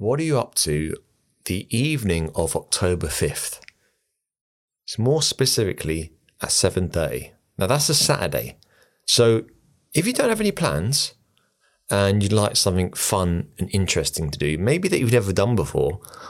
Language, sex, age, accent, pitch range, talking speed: English, male, 30-49, British, 85-125 Hz, 150 wpm